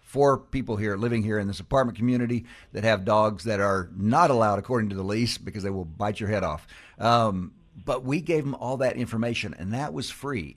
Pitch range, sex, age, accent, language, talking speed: 90-125 Hz, male, 60-79, American, English, 220 wpm